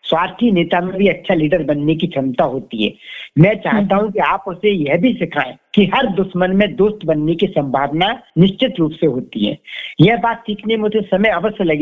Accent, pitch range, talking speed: native, 160-210 Hz, 140 wpm